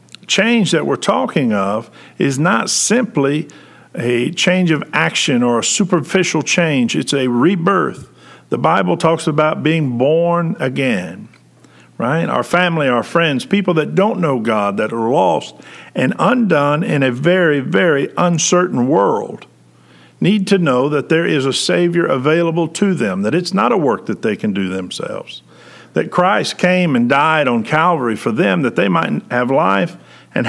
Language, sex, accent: English, male, American